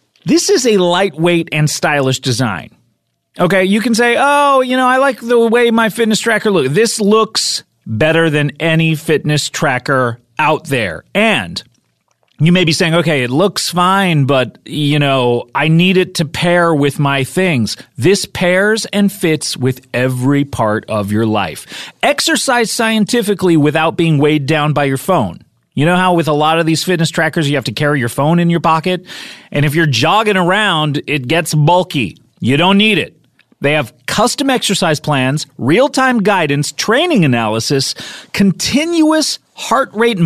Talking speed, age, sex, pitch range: 170 wpm, 30-49, male, 150-220 Hz